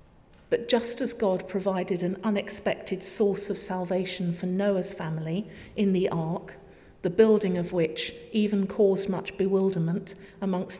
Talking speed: 140 wpm